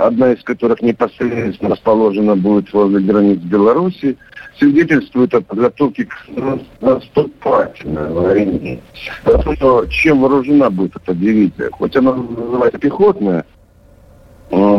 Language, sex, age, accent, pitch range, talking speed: Russian, male, 60-79, native, 110-145 Hz, 100 wpm